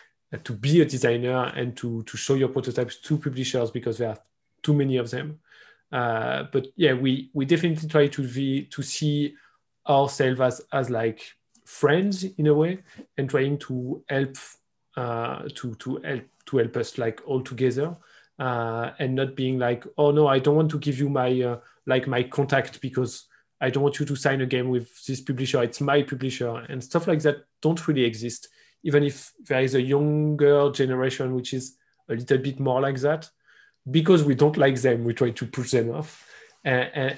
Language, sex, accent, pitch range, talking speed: Polish, male, French, 125-145 Hz, 195 wpm